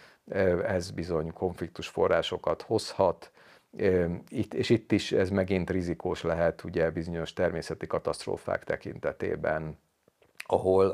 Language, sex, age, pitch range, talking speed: Hungarian, male, 50-69, 85-105 Hz, 100 wpm